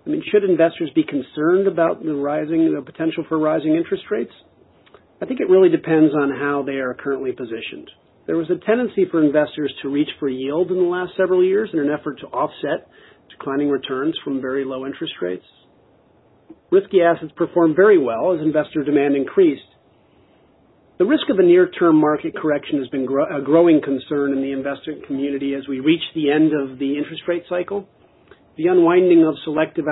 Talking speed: 185 wpm